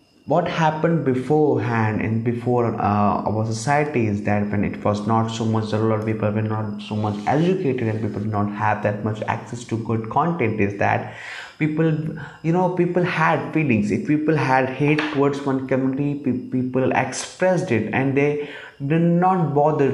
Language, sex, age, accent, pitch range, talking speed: English, male, 20-39, Indian, 120-155 Hz, 175 wpm